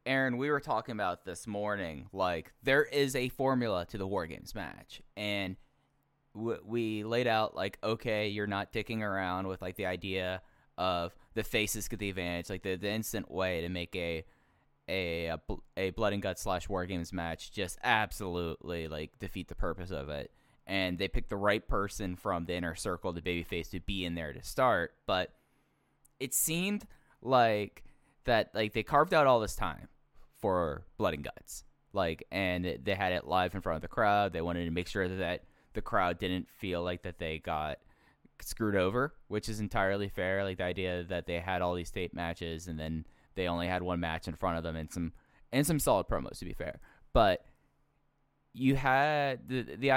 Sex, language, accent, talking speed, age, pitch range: male, English, American, 195 wpm, 10-29, 90-115 Hz